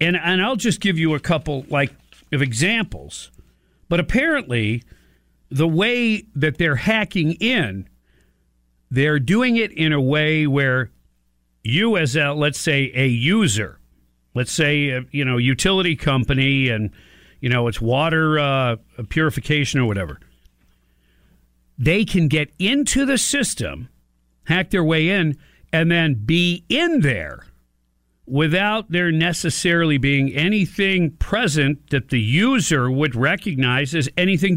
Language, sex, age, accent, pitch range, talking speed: English, male, 50-69, American, 115-175 Hz, 135 wpm